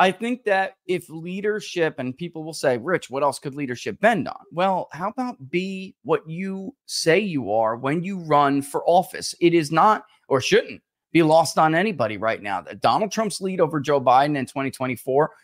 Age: 30-49